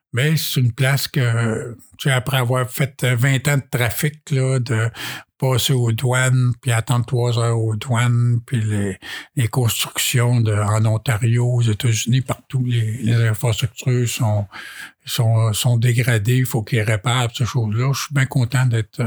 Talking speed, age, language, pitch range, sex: 165 wpm, 60-79, French, 115-130 Hz, male